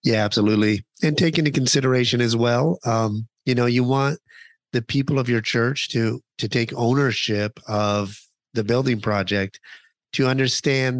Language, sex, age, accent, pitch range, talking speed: English, male, 30-49, American, 110-130 Hz, 155 wpm